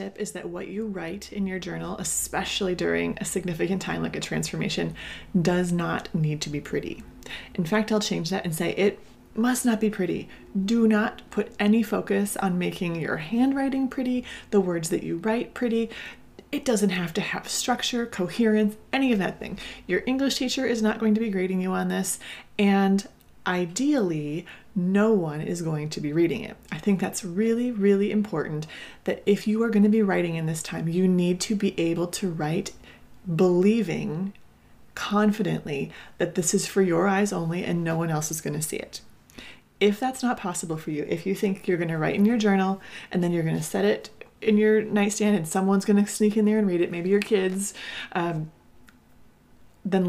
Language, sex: English, female